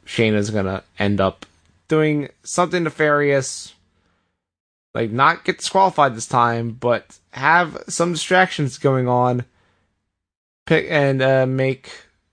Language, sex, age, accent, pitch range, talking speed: English, male, 20-39, American, 95-145 Hz, 110 wpm